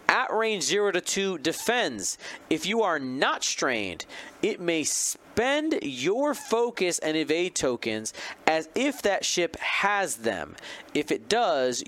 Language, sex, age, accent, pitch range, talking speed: English, male, 30-49, American, 135-200 Hz, 140 wpm